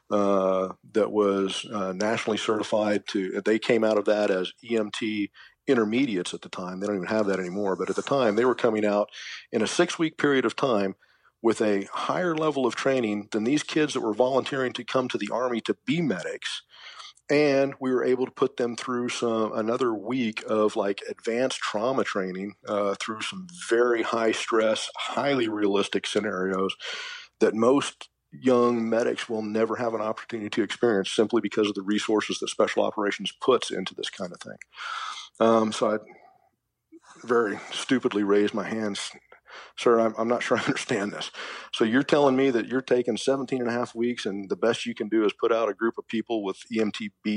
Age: 50-69